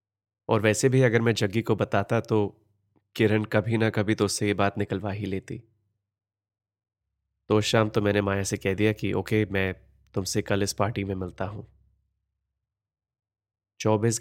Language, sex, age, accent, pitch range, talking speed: Hindi, male, 30-49, native, 100-110 Hz, 165 wpm